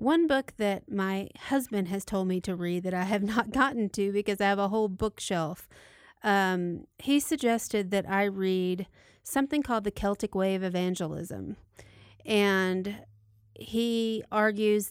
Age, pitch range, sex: 30-49, 185-220 Hz, female